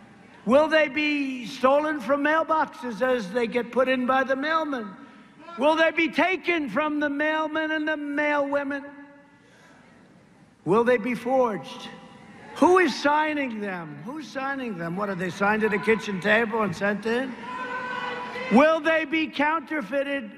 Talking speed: 145 wpm